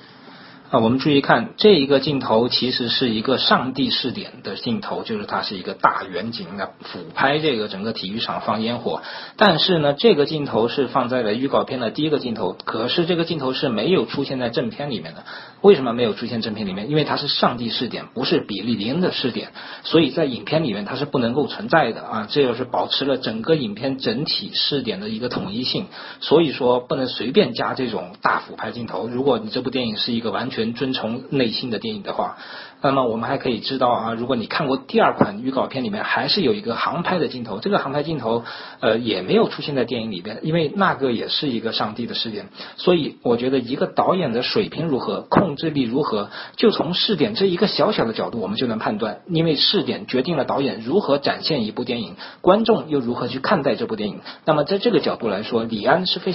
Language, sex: Chinese, male